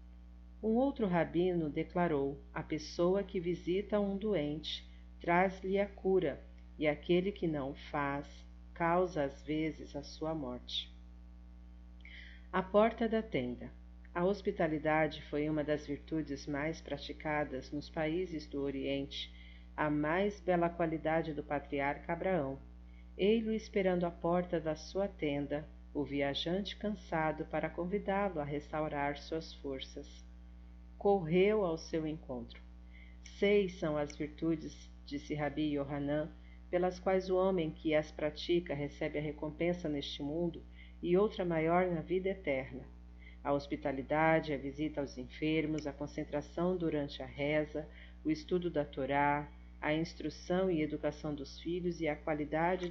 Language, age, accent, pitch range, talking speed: Portuguese, 40-59, Brazilian, 140-175 Hz, 135 wpm